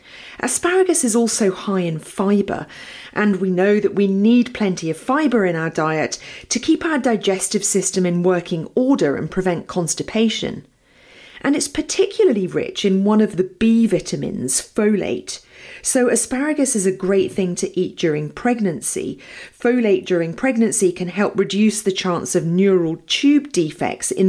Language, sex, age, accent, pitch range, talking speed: English, female, 40-59, British, 180-230 Hz, 155 wpm